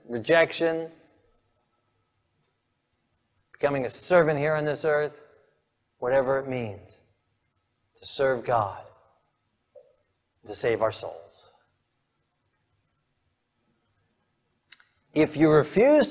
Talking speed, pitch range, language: 80 wpm, 120-150 Hz, English